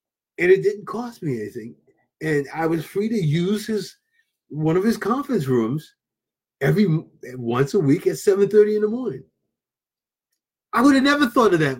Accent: American